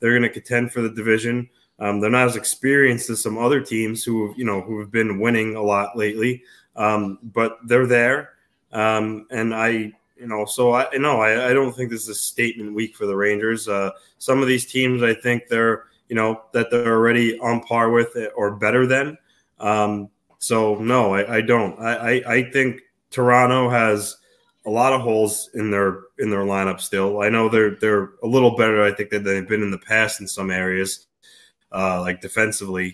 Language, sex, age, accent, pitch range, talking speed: English, male, 20-39, American, 100-115 Hz, 205 wpm